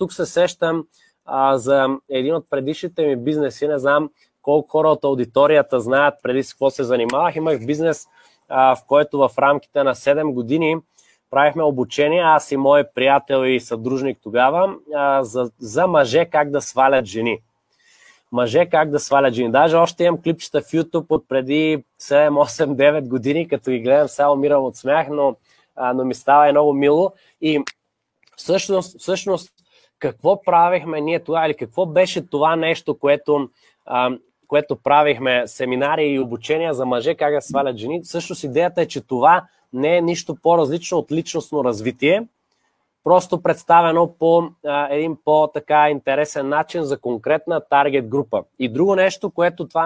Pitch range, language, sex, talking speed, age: 135-165 Hz, Bulgarian, male, 160 wpm, 20-39